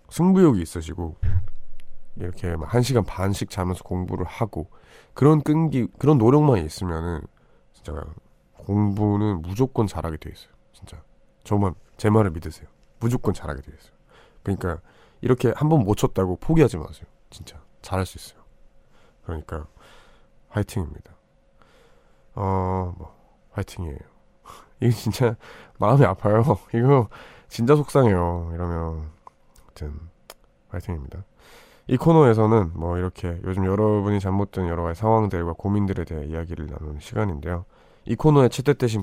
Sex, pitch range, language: male, 85-110 Hz, Korean